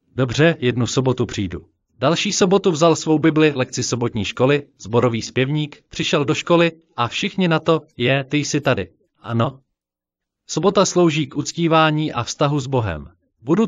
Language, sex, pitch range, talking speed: Slovak, male, 120-165 Hz, 155 wpm